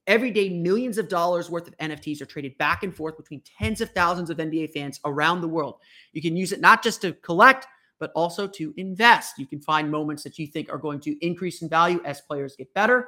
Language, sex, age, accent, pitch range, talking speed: English, male, 30-49, American, 155-205 Hz, 240 wpm